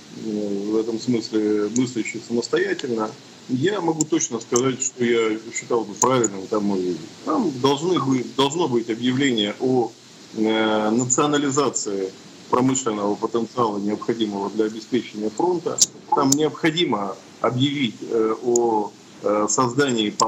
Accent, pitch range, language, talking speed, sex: native, 105-120 Hz, Russian, 95 wpm, male